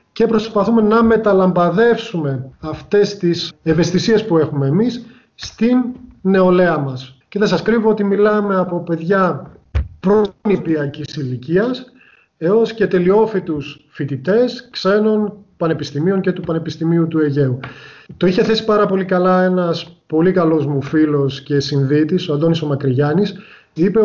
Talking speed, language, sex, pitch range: 125 wpm, Greek, male, 150-205 Hz